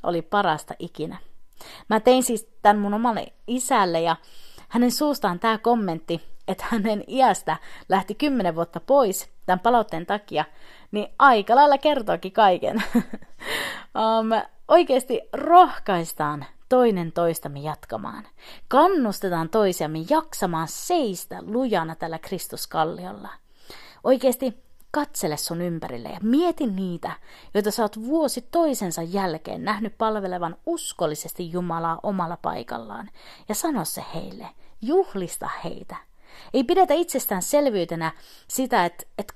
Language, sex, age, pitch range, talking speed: Finnish, female, 30-49, 175-275 Hz, 110 wpm